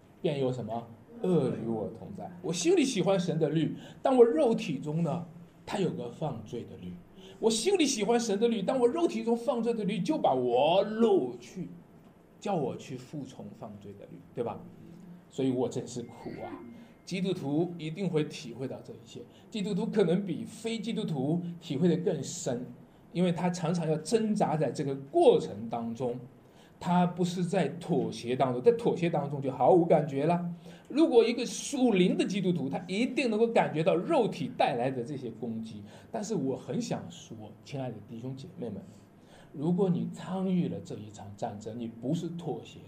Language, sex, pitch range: Chinese, male, 135-215 Hz